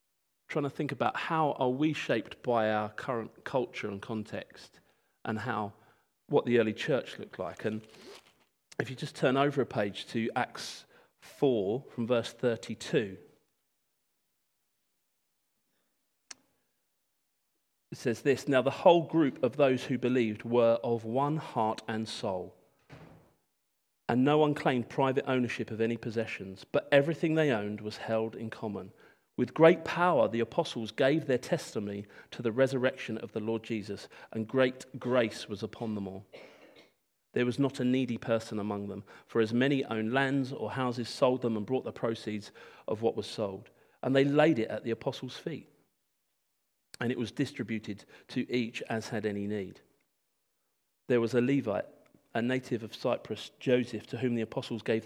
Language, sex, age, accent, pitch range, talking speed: English, male, 40-59, British, 110-135 Hz, 160 wpm